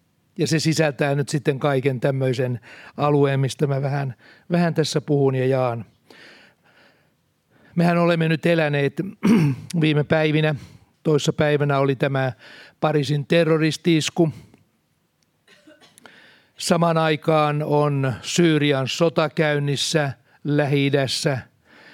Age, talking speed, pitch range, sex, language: 60-79, 95 wpm, 140-155 Hz, male, Finnish